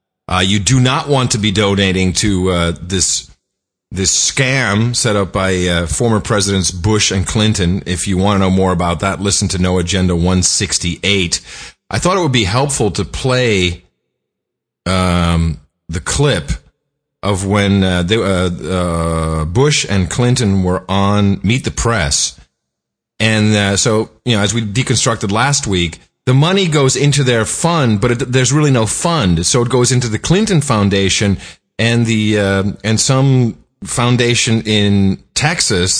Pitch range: 90-130 Hz